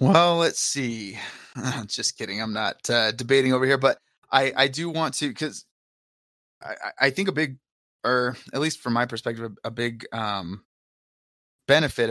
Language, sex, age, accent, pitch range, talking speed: English, male, 20-39, American, 110-130 Hz, 170 wpm